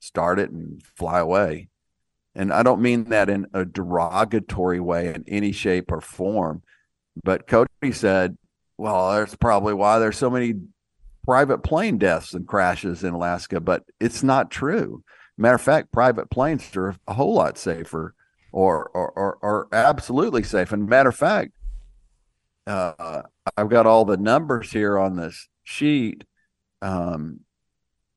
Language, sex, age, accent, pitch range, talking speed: English, male, 50-69, American, 90-105 Hz, 150 wpm